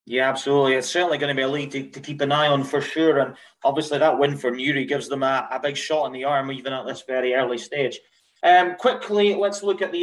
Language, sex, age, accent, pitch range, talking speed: English, male, 30-49, British, 145-190 Hz, 265 wpm